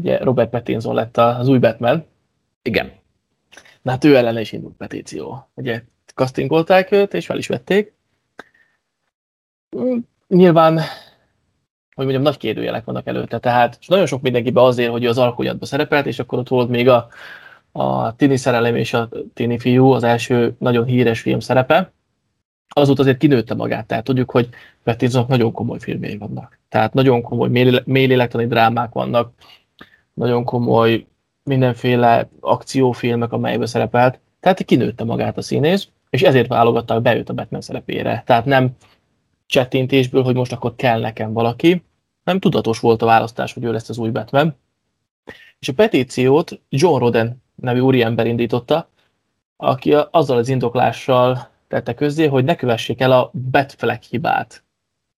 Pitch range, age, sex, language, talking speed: 115-135 Hz, 20-39, male, Hungarian, 150 wpm